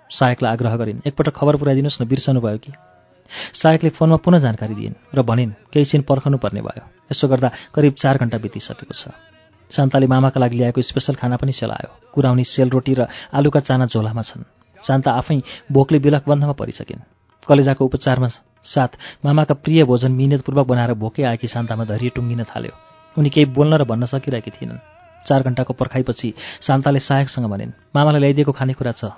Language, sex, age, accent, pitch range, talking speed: English, male, 30-49, Indian, 120-145 Hz, 115 wpm